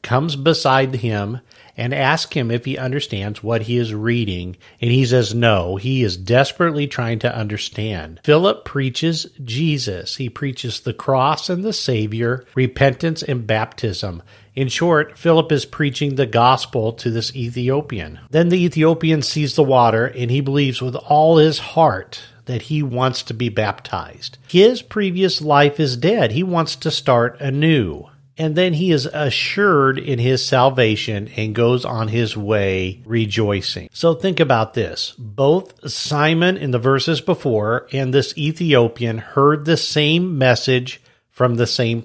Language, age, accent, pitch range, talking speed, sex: English, 50-69, American, 115-150 Hz, 155 wpm, male